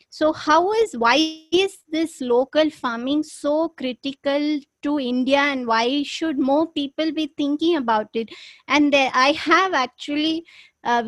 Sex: female